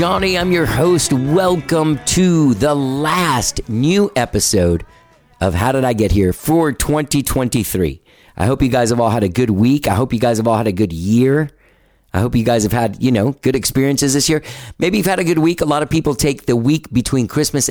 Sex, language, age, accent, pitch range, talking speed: male, English, 40-59, American, 100-135 Hz, 220 wpm